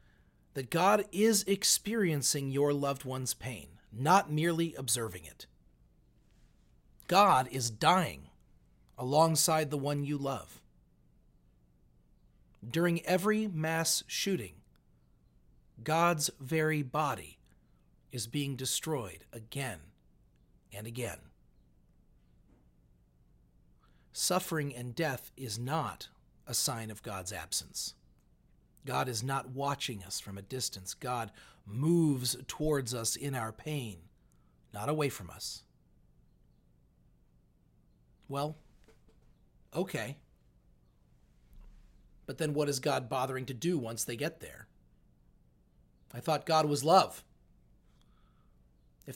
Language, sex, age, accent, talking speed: English, male, 40-59, American, 100 wpm